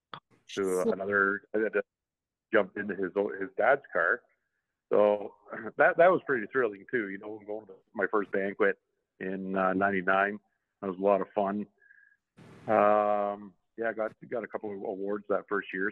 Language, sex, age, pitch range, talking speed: English, male, 50-69, 100-120 Hz, 160 wpm